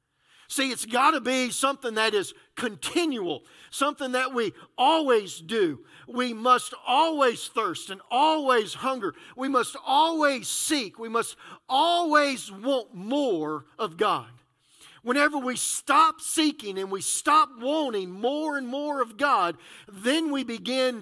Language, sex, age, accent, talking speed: English, male, 50-69, American, 135 wpm